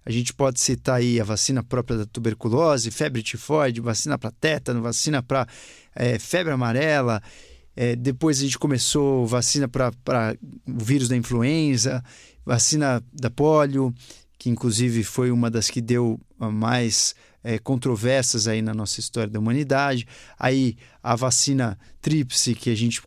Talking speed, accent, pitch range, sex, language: 140 wpm, Brazilian, 120-145 Hz, male, Portuguese